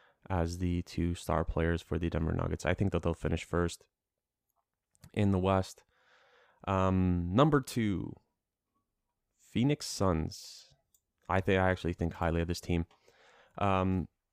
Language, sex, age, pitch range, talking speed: English, male, 20-39, 90-105 Hz, 140 wpm